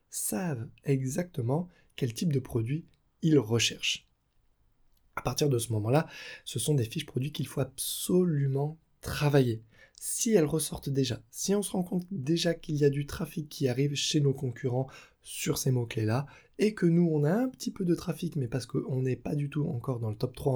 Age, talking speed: 20-39, 195 wpm